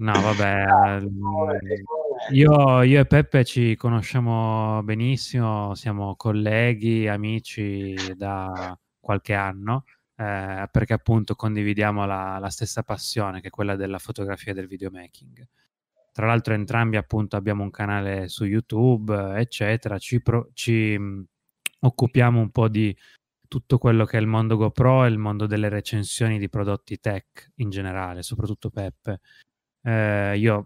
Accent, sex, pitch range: native, male, 100-120 Hz